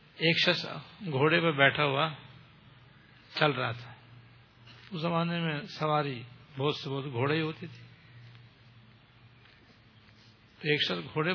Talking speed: 115 wpm